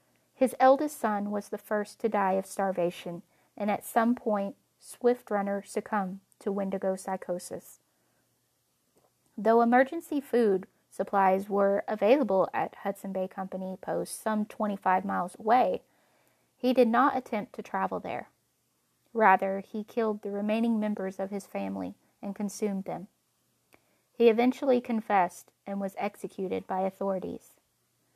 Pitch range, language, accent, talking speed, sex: 195-225 Hz, English, American, 130 wpm, female